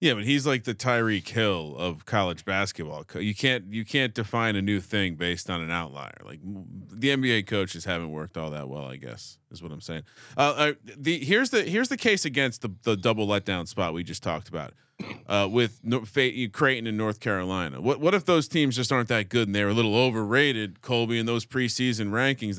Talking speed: 220 wpm